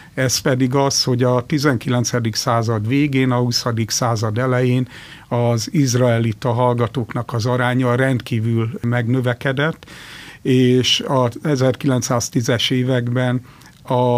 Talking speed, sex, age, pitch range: 100 wpm, male, 50-69, 115-130 Hz